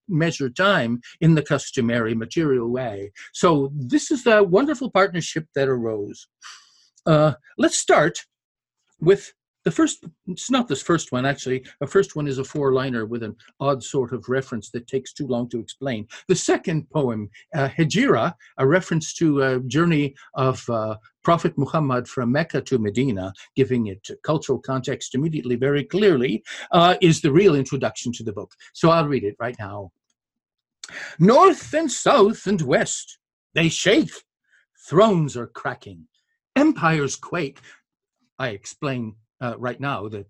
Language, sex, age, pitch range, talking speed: English, male, 50-69, 120-180 Hz, 150 wpm